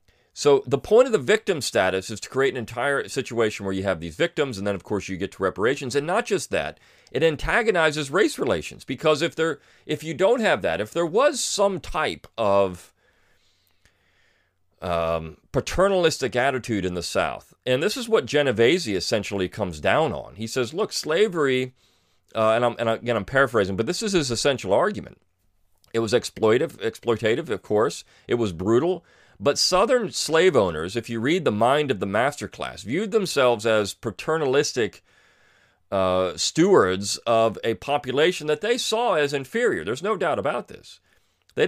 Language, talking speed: English, 175 wpm